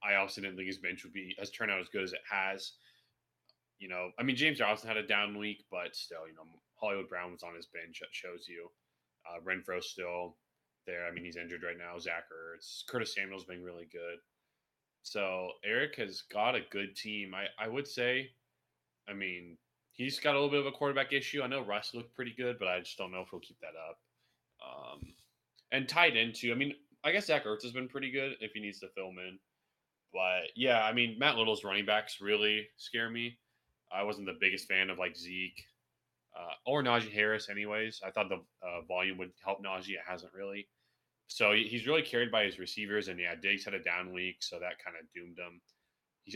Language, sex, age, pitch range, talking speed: English, male, 20-39, 90-115 Hz, 220 wpm